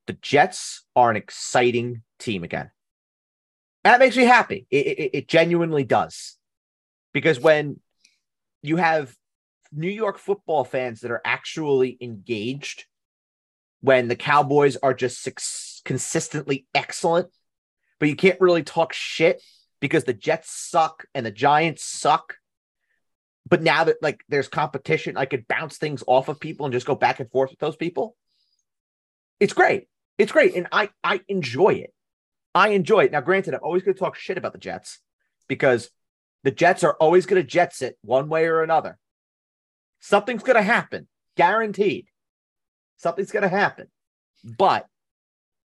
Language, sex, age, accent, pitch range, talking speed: English, male, 30-49, American, 130-175 Hz, 155 wpm